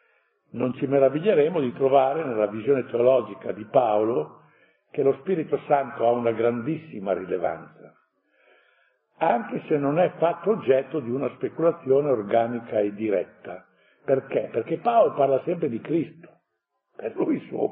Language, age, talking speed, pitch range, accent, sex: Italian, 60-79, 140 wpm, 120-165 Hz, native, male